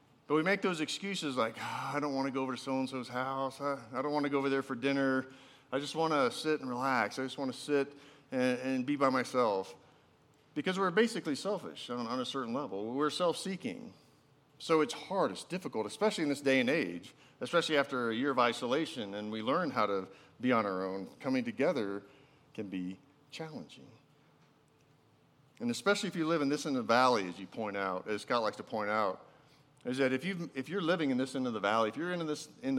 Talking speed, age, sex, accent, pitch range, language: 220 wpm, 40-59, male, American, 120-145 Hz, English